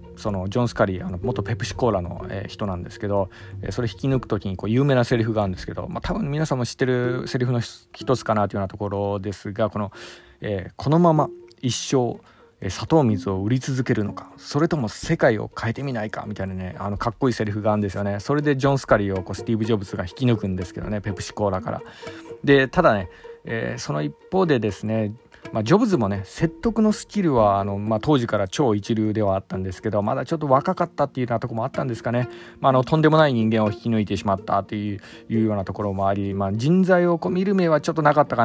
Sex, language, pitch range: male, Japanese, 100-130 Hz